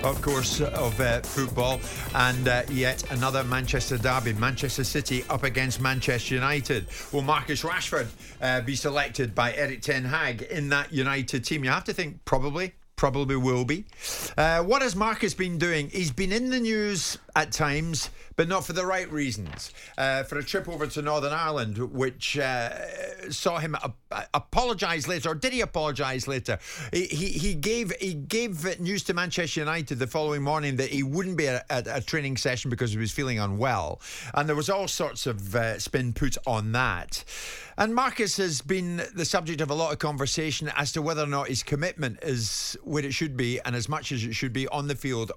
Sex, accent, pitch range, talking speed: male, British, 130-175 Hz, 195 wpm